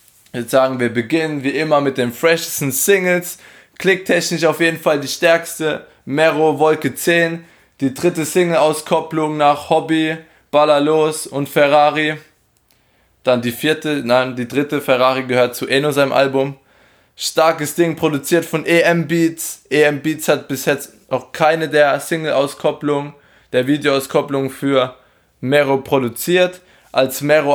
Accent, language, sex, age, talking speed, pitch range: German, German, male, 20-39, 135 wpm, 130-155 Hz